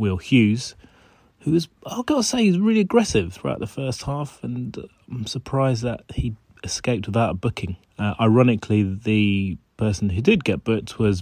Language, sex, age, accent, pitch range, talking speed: English, male, 30-49, British, 95-115 Hz, 180 wpm